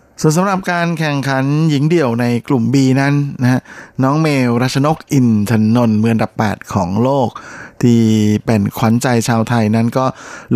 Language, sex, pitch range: Thai, male, 110-135 Hz